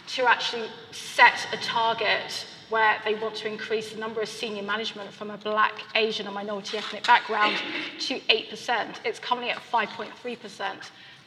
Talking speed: 155 wpm